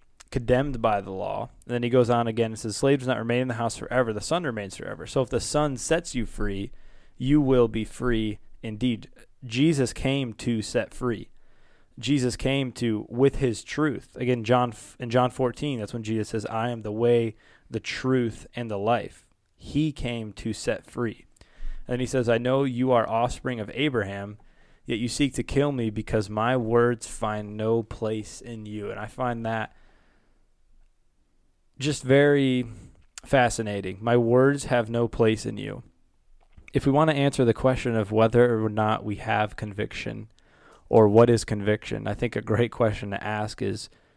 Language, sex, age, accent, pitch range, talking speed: English, male, 20-39, American, 105-125 Hz, 180 wpm